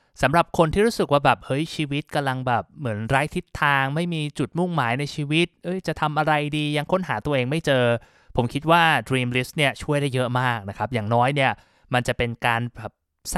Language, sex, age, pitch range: Thai, male, 20-39, 120-155 Hz